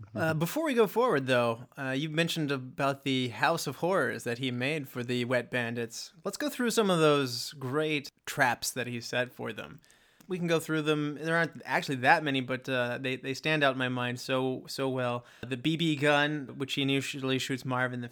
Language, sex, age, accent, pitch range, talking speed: English, male, 30-49, American, 125-150 Hz, 220 wpm